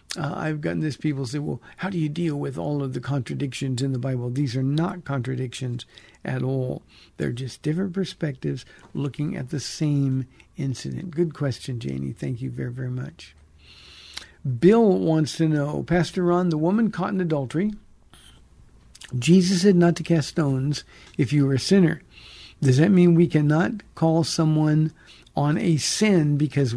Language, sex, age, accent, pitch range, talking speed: English, male, 60-79, American, 140-185 Hz, 170 wpm